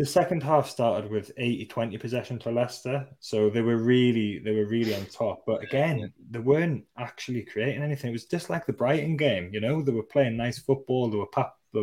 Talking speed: 220 wpm